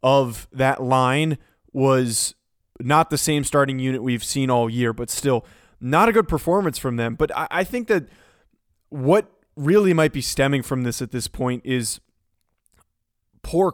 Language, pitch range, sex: English, 125-160 Hz, male